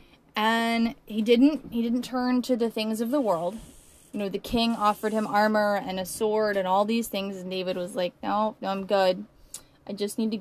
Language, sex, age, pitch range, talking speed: English, female, 20-39, 200-250 Hz, 220 wpm